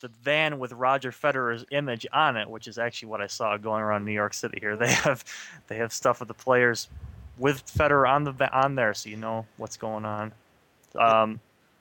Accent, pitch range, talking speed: American, 115-135 Hz, 210 wpm